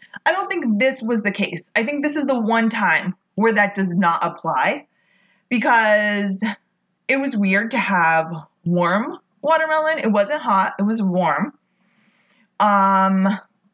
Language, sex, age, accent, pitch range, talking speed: English, female, 20-39, American, 185-215 Hz, 150 wpm